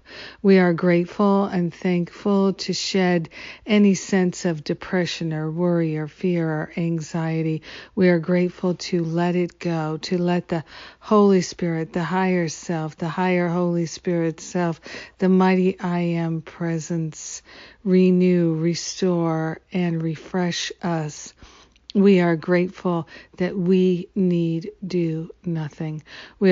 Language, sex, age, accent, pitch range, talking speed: English, female, 50-69, American, 165-185 Hz, 125 wpm